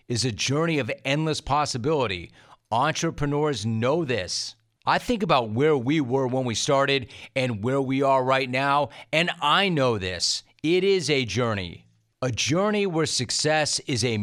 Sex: male